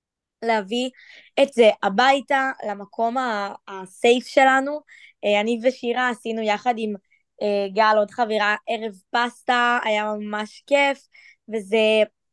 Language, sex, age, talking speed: Hebrew, female, 20-39, 105 wpm